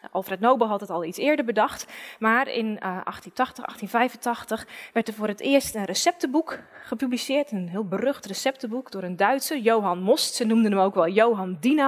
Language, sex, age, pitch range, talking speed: Dutch, female, 20-39, 200-270 Hz, 180 wpm